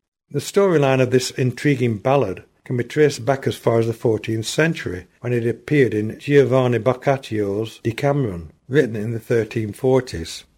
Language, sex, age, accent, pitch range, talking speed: English, male, 60-79, British, 110-140 Hz, 155 wpm